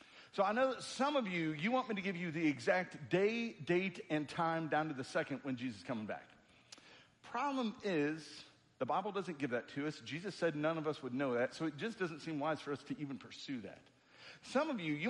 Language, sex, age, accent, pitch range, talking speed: English, male, 50-69, American, 145-190 Hz, 245 wpm